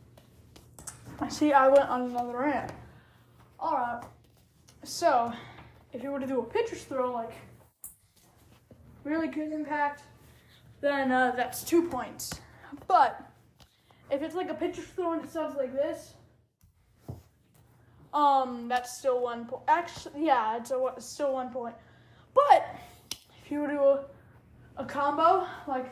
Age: 10-29